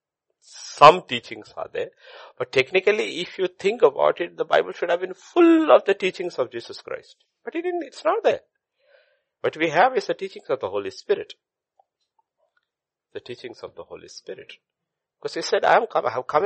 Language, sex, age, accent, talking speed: English, male, 60-79, Indian, 195 wpm